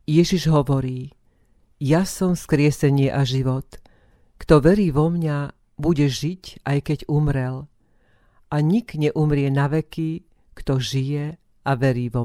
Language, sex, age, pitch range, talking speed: Slovak, female, 50-69, 135-165 Hz, 125 wpm